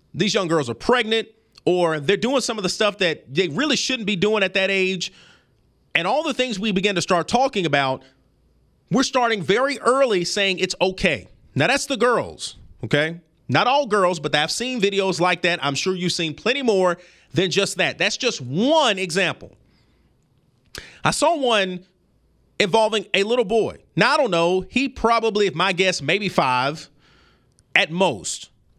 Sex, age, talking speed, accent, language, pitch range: male, 30-49, 175 wpm, American, English, 175-245 Hz